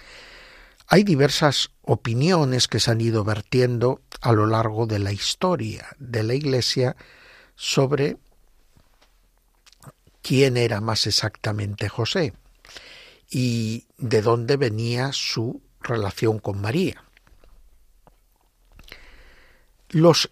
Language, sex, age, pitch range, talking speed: Spanish, male, 60-79, 110-150 Hz, 95 wpm